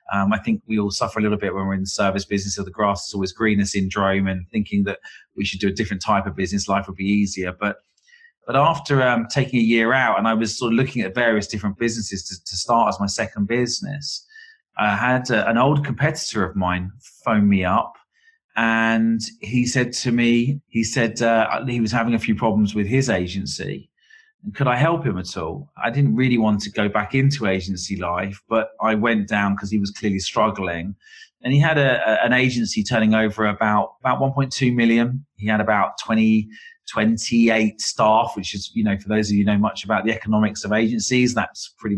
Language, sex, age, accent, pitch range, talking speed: English, male, 30-49, British, 100-125 Hz, 215 wpm